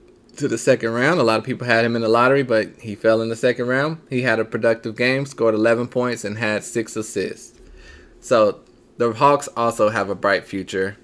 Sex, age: male, 20-39